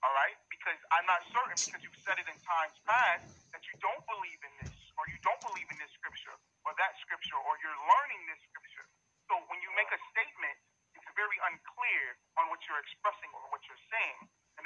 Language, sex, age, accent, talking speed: English, male, 40-59, American, 210 wpm